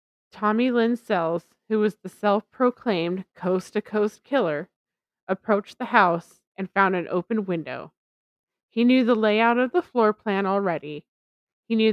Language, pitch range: English, 180-225 Hz